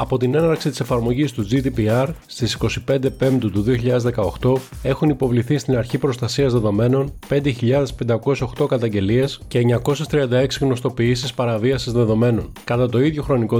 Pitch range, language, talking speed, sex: 120-140 Hz, Greek, 130 wpm, male